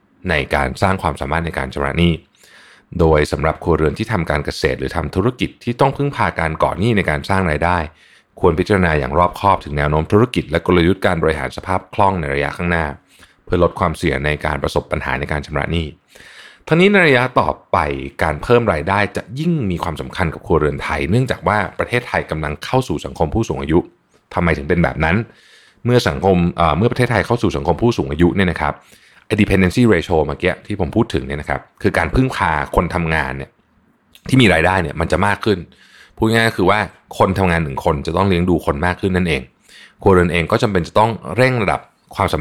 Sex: male